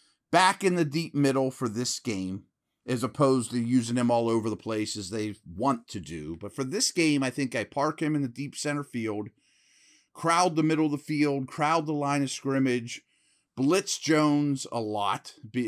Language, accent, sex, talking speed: English, American, male, 200 wpm